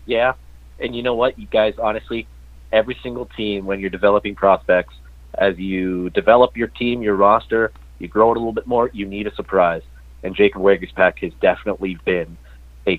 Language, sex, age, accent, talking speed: English, male, 30-49, American, 190 wpm